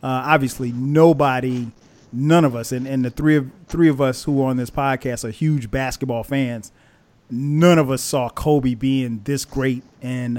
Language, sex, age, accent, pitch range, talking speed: English, male, 30-49, American, 125-150 Hz, 185 wpm